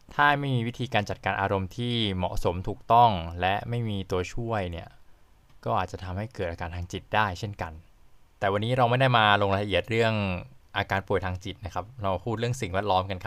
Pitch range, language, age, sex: 95-120 Hz, Thai, 20-39, male